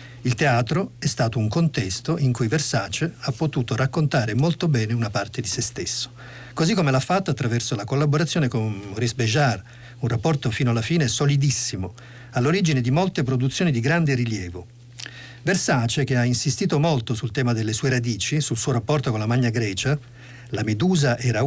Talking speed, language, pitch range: 175 wpm, Italian, 120-150 Hz